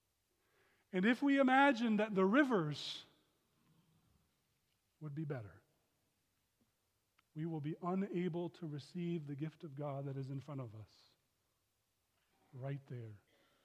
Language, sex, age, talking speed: English, male, 40-59, 125 wpm